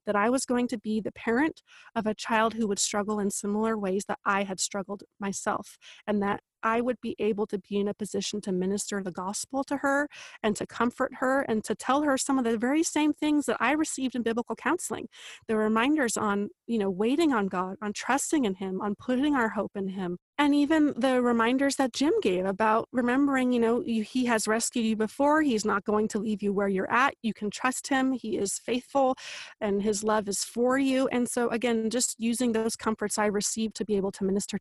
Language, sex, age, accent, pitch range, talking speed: English, female, 30-49, American, 215-270 Hz, 225 wpm